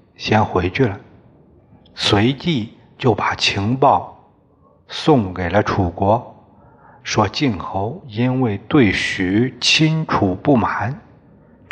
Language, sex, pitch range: Chinese, male, 100-130 Hz